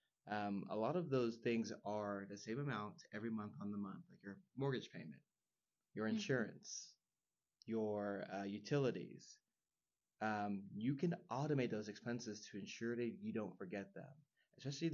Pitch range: 105-125 Hz